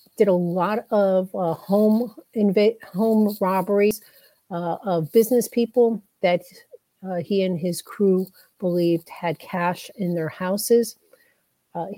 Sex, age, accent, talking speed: female, 50-69, American, 130 wpm